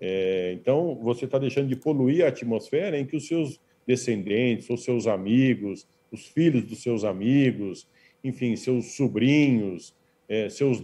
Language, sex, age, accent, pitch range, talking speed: Portuguese, male, 50-69, Brazilian, 115-145 Hz, 140 wpm